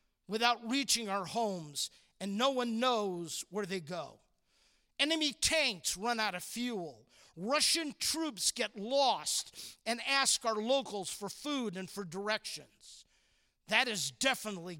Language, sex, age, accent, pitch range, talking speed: English, male, 50-69, American, 190-260 Hz, 135 wpm